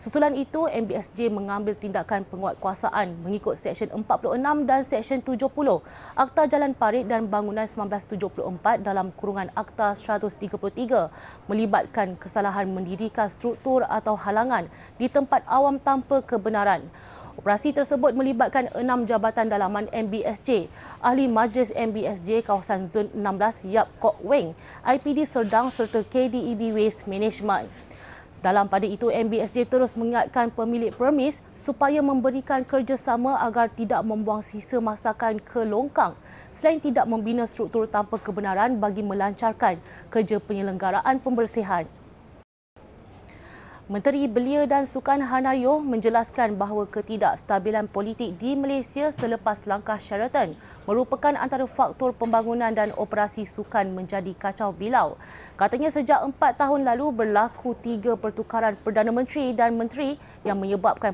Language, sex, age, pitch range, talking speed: Malay, female, 20-39, 205-260 Hz, 120 wpm